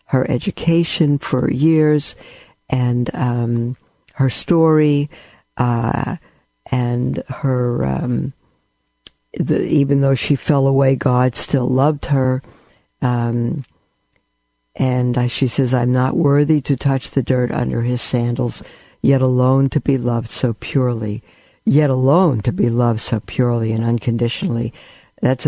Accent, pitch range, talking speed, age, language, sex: American, 120-140 Hz, 125 wpm, 60-79, English, female